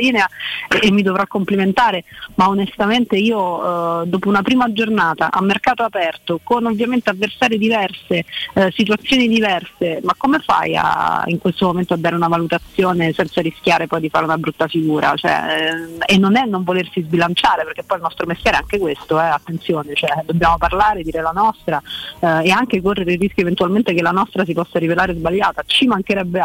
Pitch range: 170-210 Hz